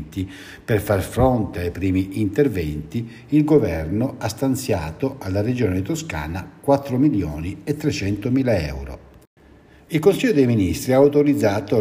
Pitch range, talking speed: 95-140 Hz, 125 wpm